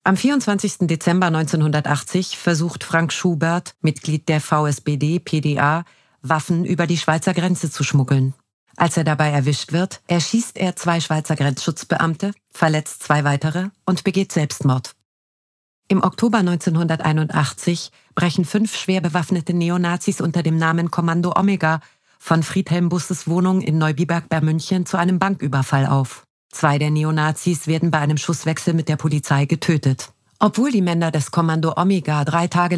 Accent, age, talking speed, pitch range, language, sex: German, 40-59, 140 wpm, 150-180 Hz, German, female